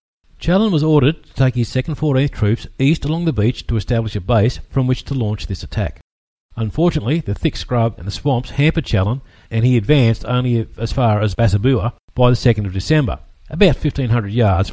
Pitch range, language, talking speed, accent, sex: 100-135 Hz, English, 195 wpm, Australian, male